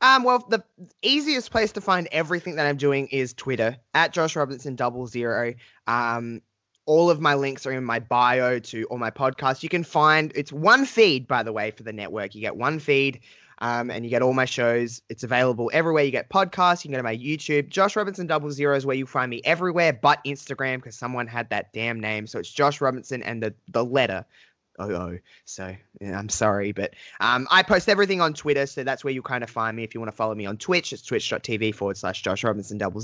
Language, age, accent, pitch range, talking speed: English, 20-39, Australian, 115-155 Hz, 230 wpm